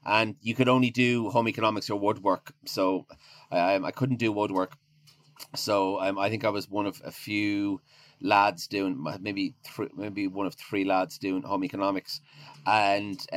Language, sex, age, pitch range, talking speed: English, male, 30-49, 95-130 Hz, 175 wpm